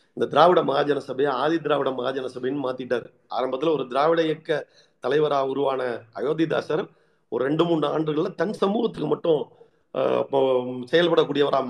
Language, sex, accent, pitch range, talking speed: Tamil, male, native, 140-190 Hz, 130 wpm